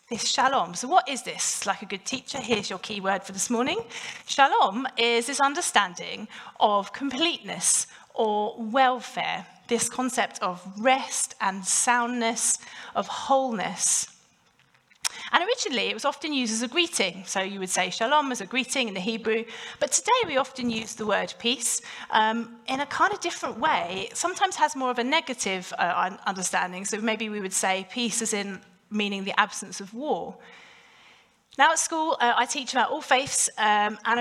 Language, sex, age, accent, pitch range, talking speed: English, female, 30-49, British, 210-265 Hz, 175 wpm